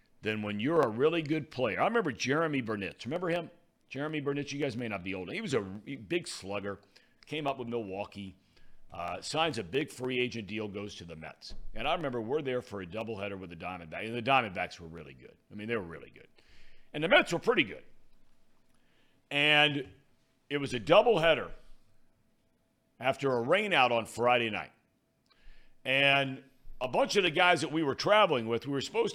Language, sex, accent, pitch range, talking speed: English, male, American, 105-150 Hz, 195 wpm